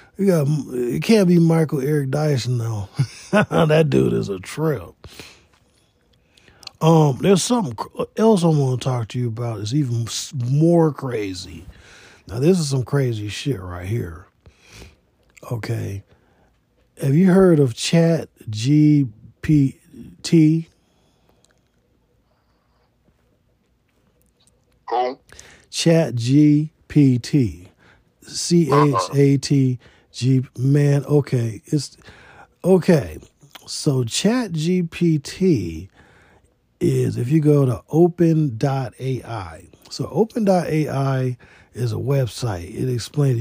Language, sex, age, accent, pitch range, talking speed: English, male, 40-59, American, 115-160 Hz, 100 wpm